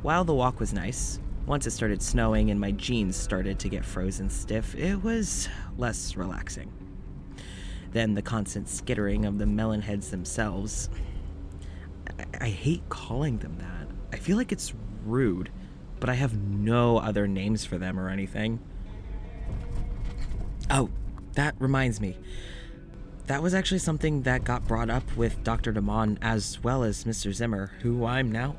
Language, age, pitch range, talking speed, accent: English, 20-39, 95-130 Hz, 155 wpm, American